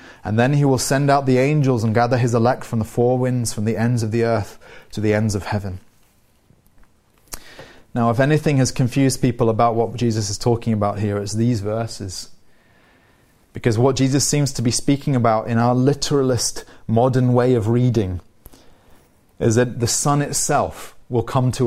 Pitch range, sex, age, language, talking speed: 115-135 Hz, male, 30-49, English, 185 wpm